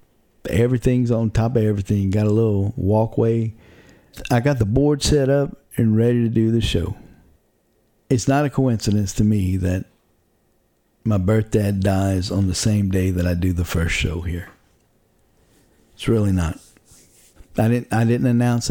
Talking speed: 165 wpm